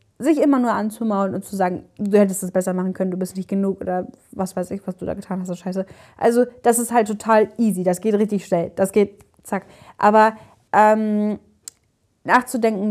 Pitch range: 195-245 Hz